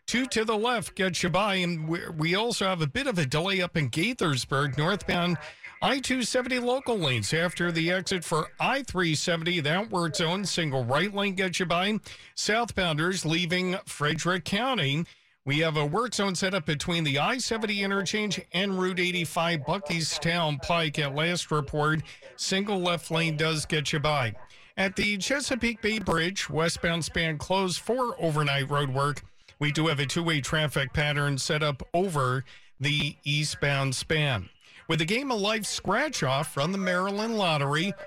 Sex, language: male, English